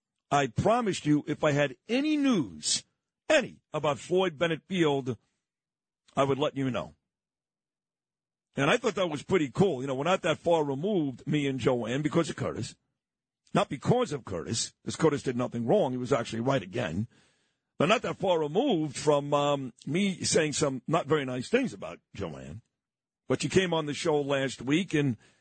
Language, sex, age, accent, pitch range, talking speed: English, male, 50-69, American, 135-165 Hz, 180 wpm